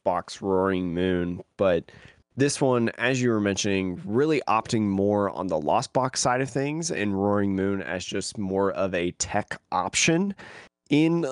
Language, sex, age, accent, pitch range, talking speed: English, male, 20-39, American, 95-130 Hz, 165 wpm